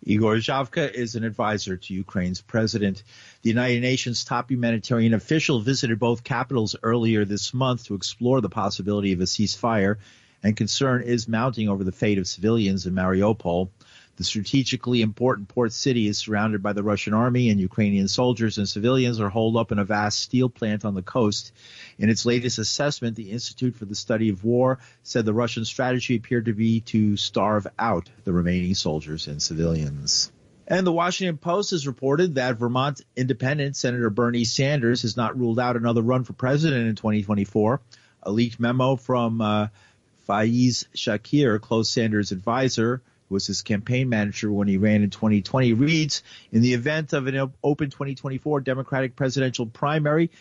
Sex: male